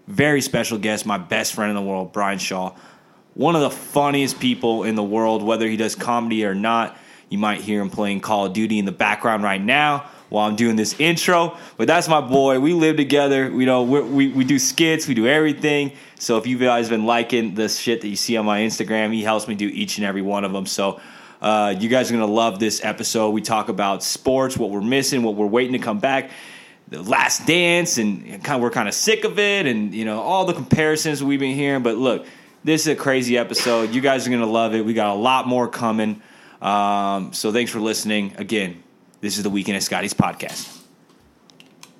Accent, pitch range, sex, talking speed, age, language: American, 110-140 Hz, male, 225 wpm, 20-39, English